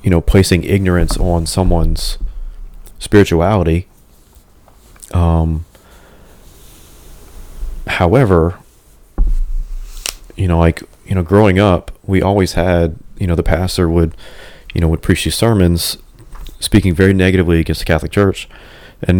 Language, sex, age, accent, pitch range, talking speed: English, male, 30-49, American, 80-95 Hz, 120 wpm